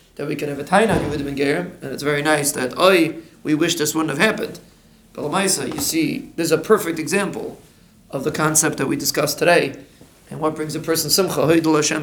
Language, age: English, 40-59